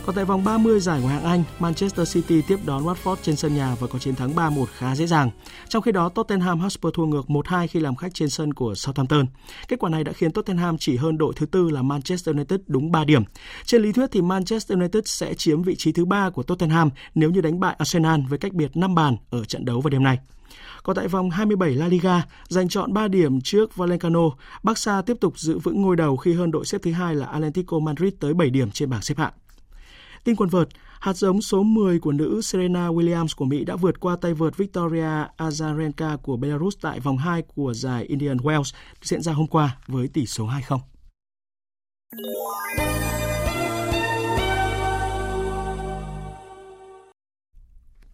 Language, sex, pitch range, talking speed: Vietnamese, male, 140-185 Hz, 195 wpm